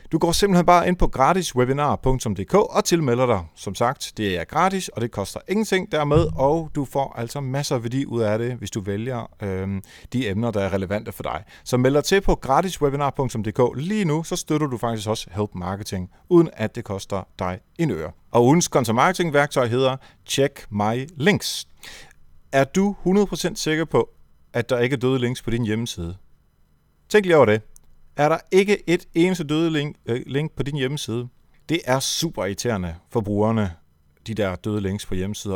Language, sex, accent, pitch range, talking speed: Danish, male, native, 105-155 Hz, 180 wpm